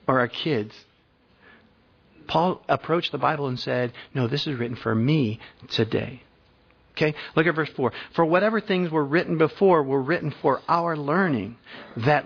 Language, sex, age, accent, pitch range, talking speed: English, male, 50-69, American, 130-165 Hz, 160 wpm